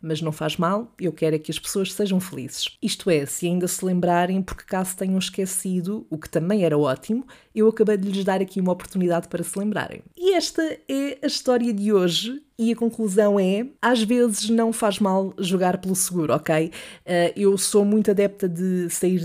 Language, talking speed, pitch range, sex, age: Portuguese, 200 wpm, 180-225 Hz, female, 20-39